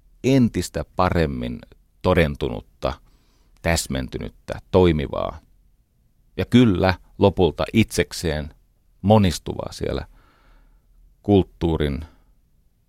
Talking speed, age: 55 wpm, 40-59